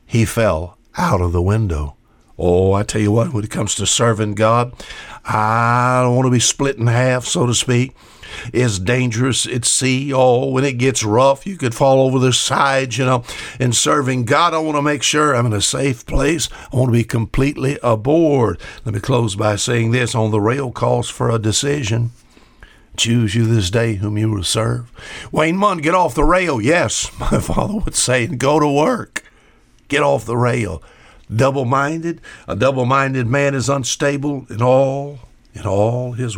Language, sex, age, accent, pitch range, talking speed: English, male, 60-79, American, 110-140 Hz, 190 wpm